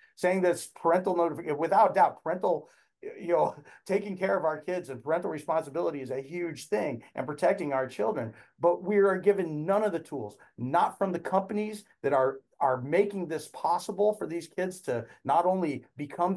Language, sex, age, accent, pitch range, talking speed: English, male, 40-59, American, 150-195 Hz, 185 wpm